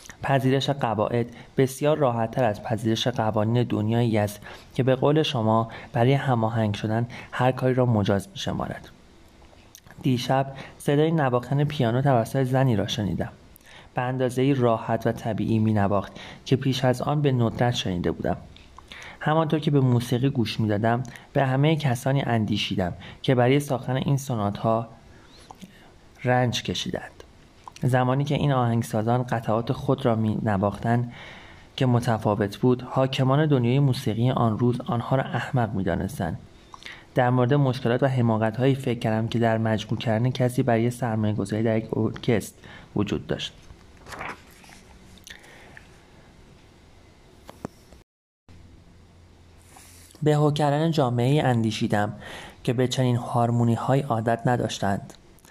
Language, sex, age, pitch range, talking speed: Persian, male, 30-49, 110-130 Hz, 125 wpm